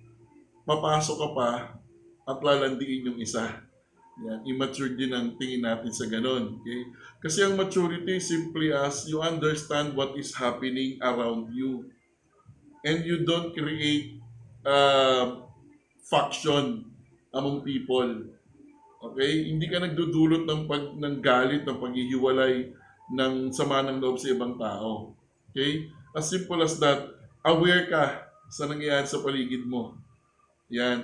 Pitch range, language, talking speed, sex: 130-160 Hz, Filipino, 125 wpm, male